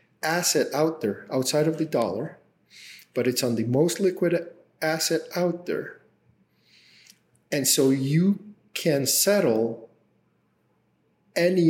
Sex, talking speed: male, 115 wpm